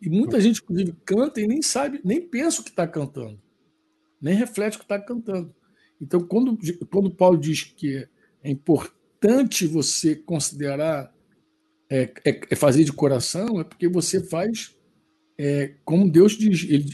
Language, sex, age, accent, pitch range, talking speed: Portuguese, male, 60-79, Brazilian, 155-215 Hz, 165 wpm